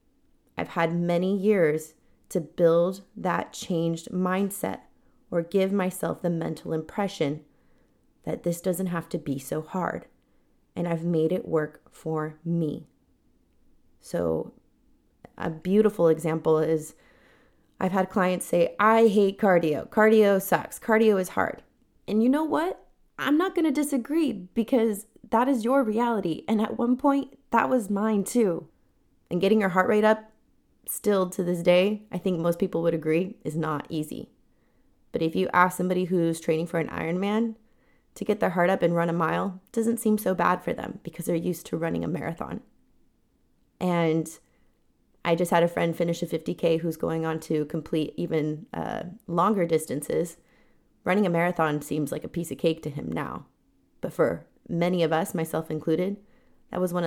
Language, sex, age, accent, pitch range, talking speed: English, female, 20-39, American, 165-210 Hz, 170 wpm